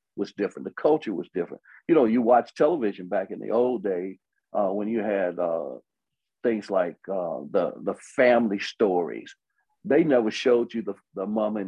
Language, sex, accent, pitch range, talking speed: English, male, American, 105-130 Hz, 185 wpm